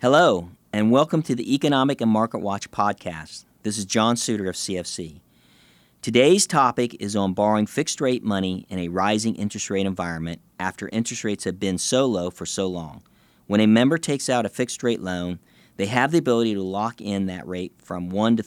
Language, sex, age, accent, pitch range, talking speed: English, male, 40-59, American, 95-120 Hz, 190 wpm